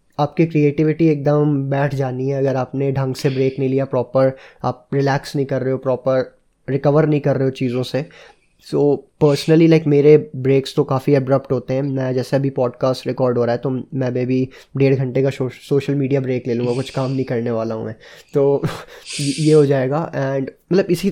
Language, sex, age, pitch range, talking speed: Hindi, male, 20-39, 130-150 Hz, 200 wpm